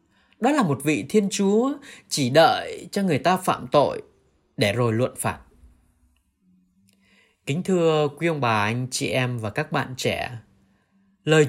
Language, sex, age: Vietnamese, male, 20-39